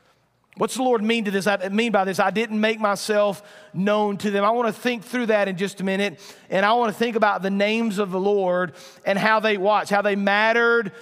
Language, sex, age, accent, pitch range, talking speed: English, male, 40-59, American, 195-225 Hz, 245 wpm